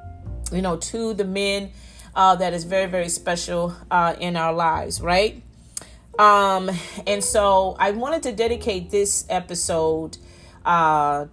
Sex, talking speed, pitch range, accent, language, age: female, 140 wpm, 165-250 Hz, American, English, 30-49